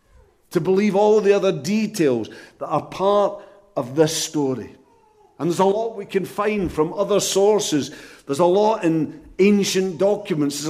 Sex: male